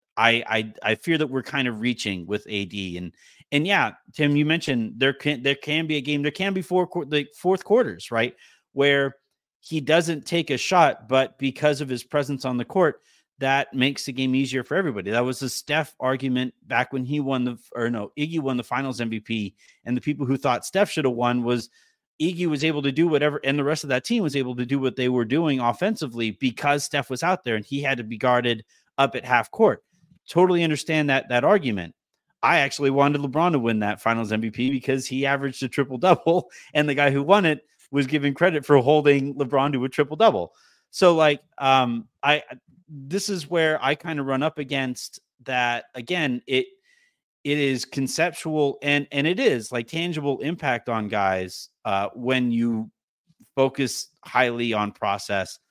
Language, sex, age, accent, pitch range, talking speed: English, male, 30-49, American, 125-150 Hz, 205 wpm